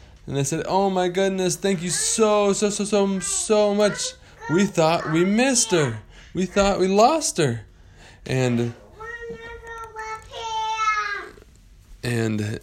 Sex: male